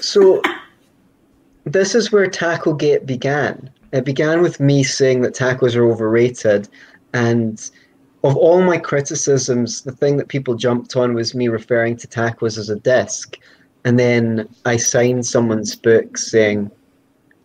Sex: male